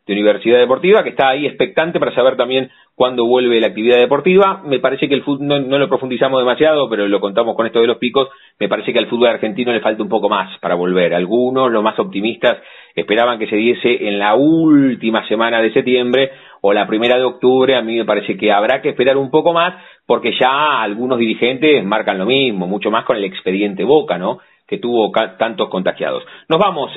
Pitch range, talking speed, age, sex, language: 120-160 Hz, 210 wpm, 30-49, male, Spanish